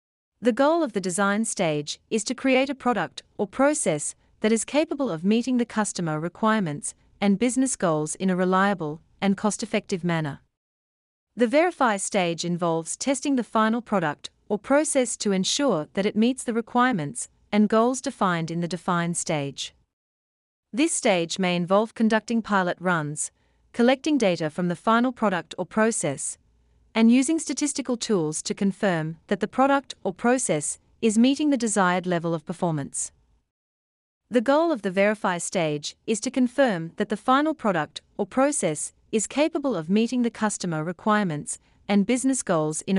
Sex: female